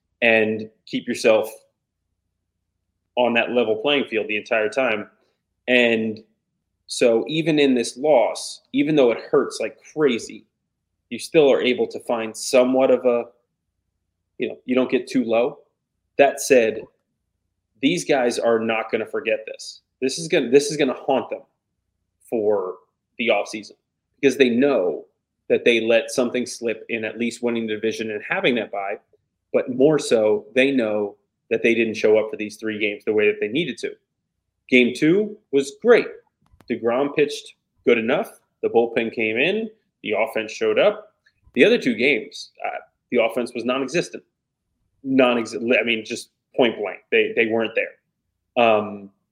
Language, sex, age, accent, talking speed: English, male, 30-49, American, 165 wpm